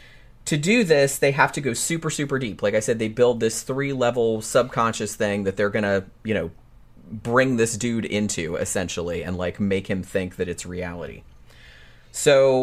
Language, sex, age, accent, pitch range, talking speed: English, male, 30-49, American, 105-130 Hz, 185 wpm